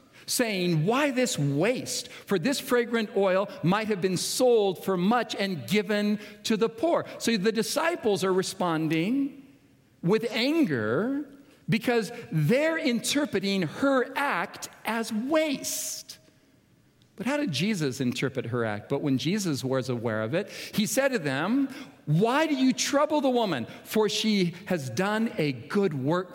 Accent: American